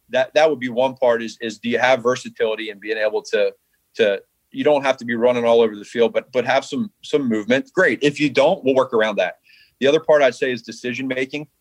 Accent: American